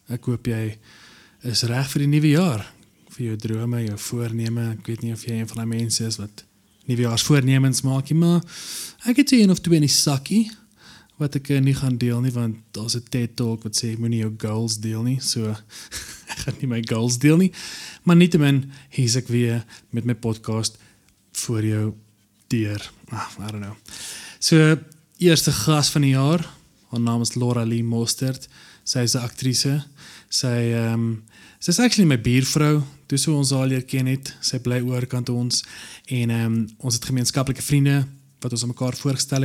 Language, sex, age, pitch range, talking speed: English, male, 20-39, 115-135 Hz, 190 wpm